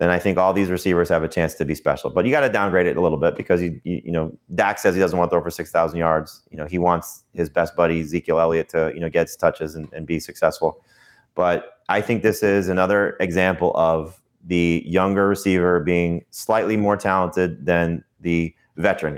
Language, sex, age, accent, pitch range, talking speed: English, male, 30-49, American, 85-95 Hz, 230 wpm